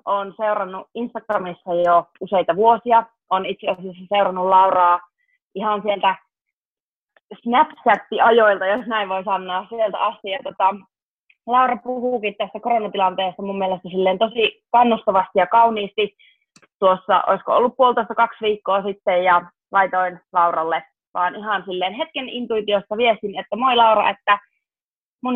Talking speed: 130 wpm